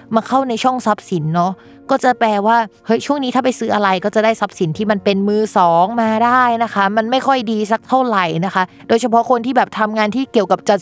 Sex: female